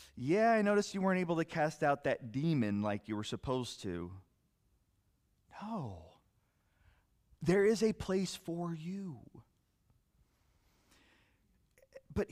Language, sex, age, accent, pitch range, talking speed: English, male, 30-49, American, 120-165 Hz, 115 wpm